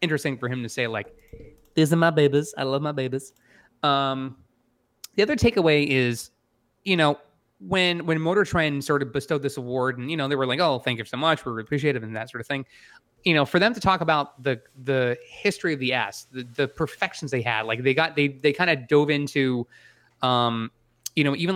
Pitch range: 125-155 Hz